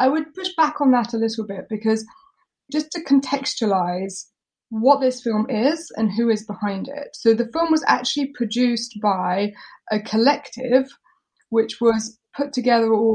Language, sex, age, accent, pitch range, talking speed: English, female, 20-39, British, 210-255 Hz, 160 wpm